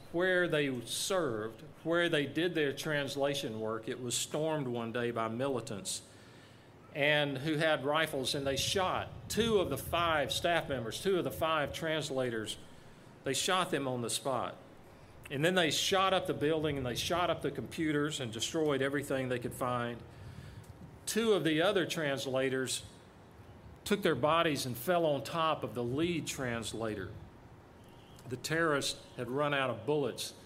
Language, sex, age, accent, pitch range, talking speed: English, male, 40-59, American, 120-160 Hz, 160 wpm